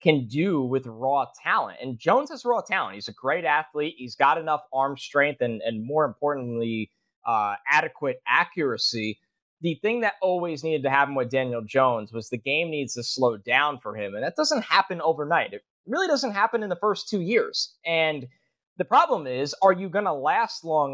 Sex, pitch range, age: male, 130-185 Hz, 20-39